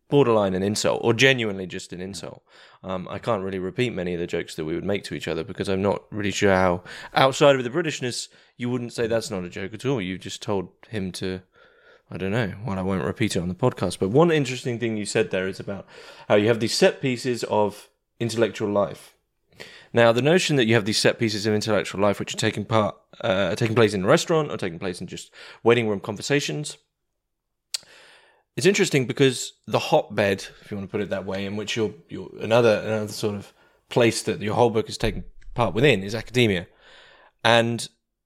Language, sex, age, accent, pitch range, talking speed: English, male, 20-39, British, 100-125 Hz, 220 wpm